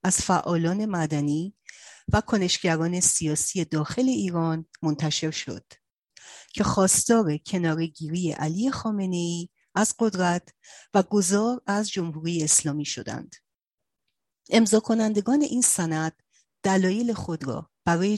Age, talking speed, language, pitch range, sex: 40-59, 100 wpm, Persian, 155-200 Hz, female